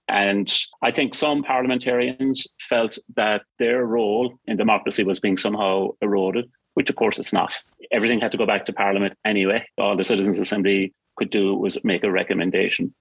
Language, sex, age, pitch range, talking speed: English, male, 30-49, 100-120 Hz, 175 wpm